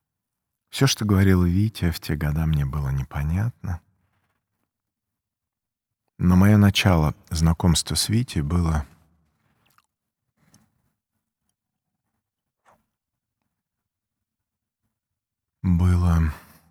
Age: 40-59